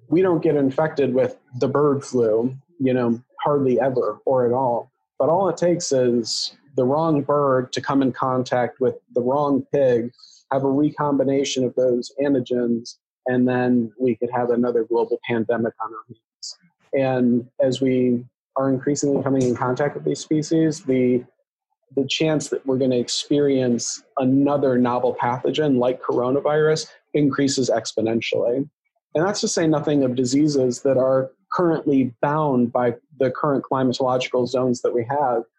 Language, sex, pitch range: English, male, 125-150 Hz